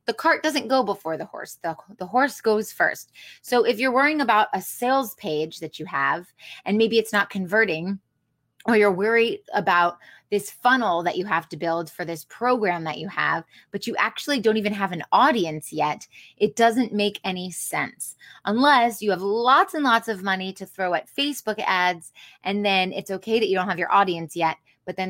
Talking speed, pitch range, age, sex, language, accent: 205 wpm, 165-225 Hz, 20-39, female, English, American